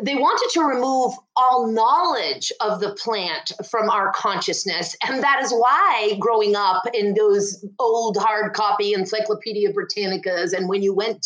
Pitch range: 210-265 Hz